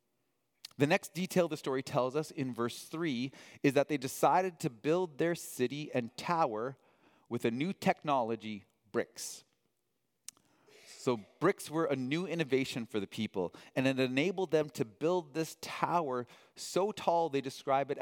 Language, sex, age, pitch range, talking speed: English, male, 30-49, 120-160 Hz, 155 wpm